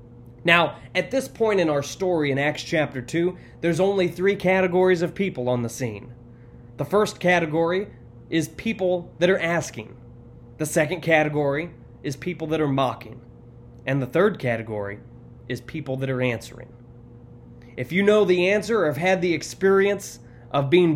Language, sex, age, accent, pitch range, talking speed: English, male, 20-39, American, 120-180 Hz, 165 wpm